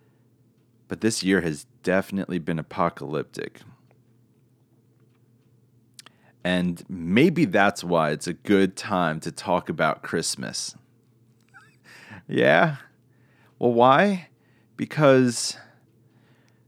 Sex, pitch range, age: male, 90-120 Hz, 30-49